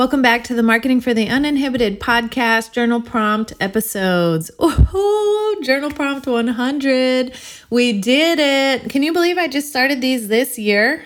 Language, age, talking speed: English, 30-49, 150 wpm